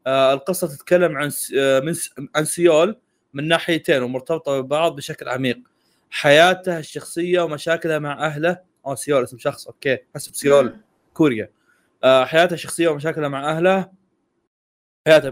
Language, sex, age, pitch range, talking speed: Arabic, male, 20-39, 135-160 Hz, 115 wpm